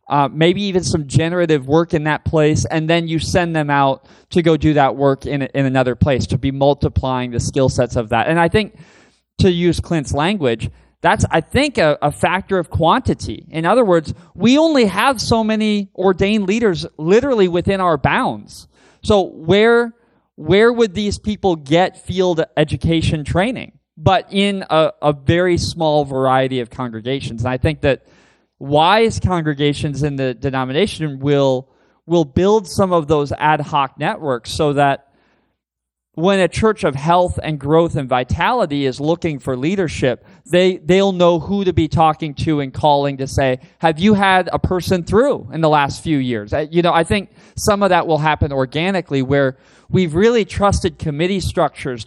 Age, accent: 20-39, American